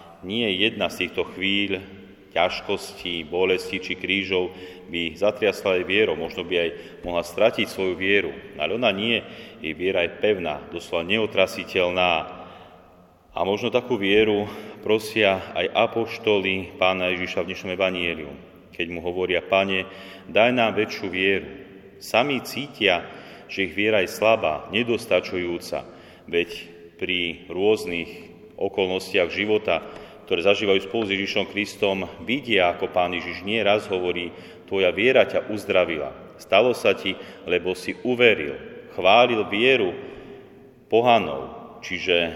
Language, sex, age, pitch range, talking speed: Slovak, male, 30-49, 90-100 Hz, 125 wpm